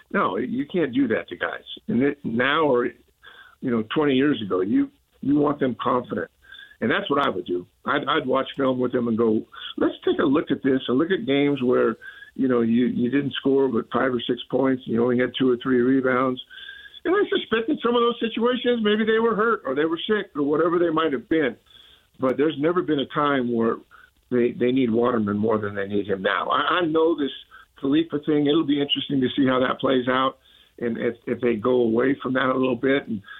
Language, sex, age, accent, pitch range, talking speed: English, male, 50-69, American, 125-170 Hz, 235 wpm